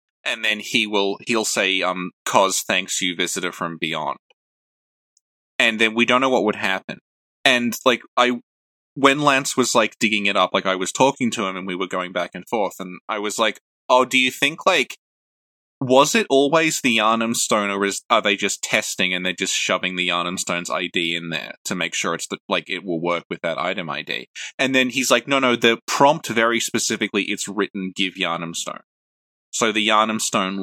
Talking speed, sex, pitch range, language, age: 210 wpm, male, 90-120 Hz, English, 20-39